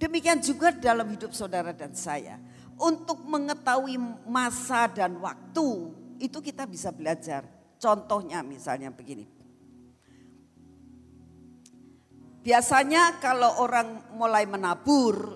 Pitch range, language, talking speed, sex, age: 160-250 Hz, Indonesian, 95 wpm, female, 50-69